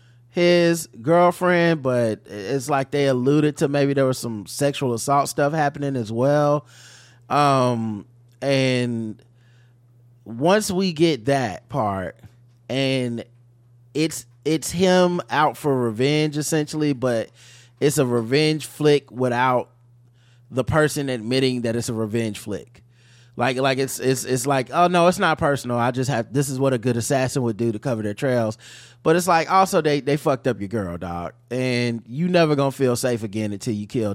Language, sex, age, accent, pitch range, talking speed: English, male, 20-39, American, 120-145 Hz, 165 wpm